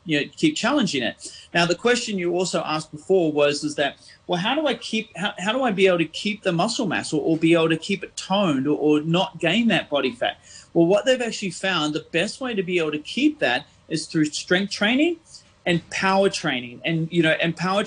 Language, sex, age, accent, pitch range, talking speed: English, male, 30-49, Australian, 150-190 Hz, 240 wpm